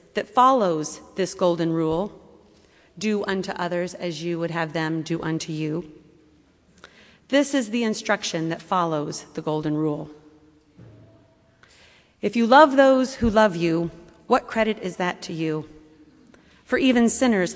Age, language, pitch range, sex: 30-49, English, 170-240 Hz, female